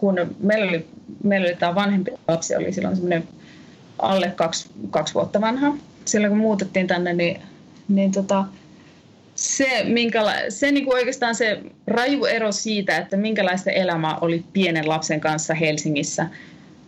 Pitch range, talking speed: 165-205 Hz, 140 wpm